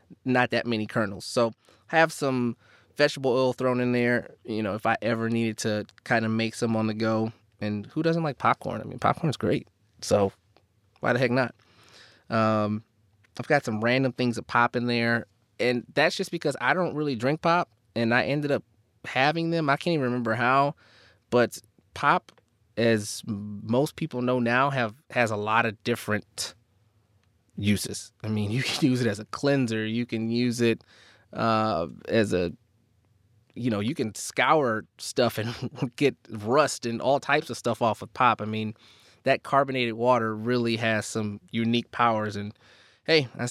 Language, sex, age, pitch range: English, male, 20-39, 110-125 Hz